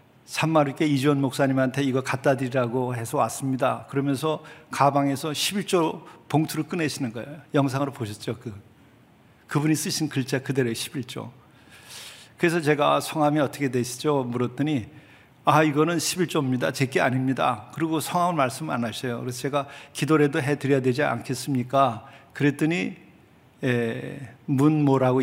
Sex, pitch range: male, 125-155 Hz